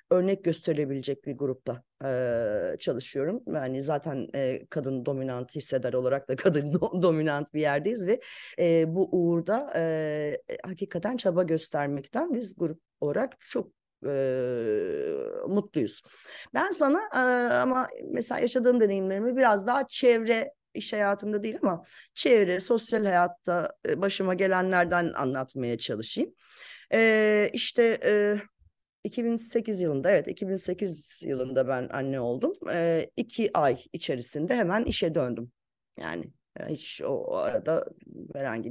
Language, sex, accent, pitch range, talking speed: Turkish, female, native, 140-230 Hz, 120 wpm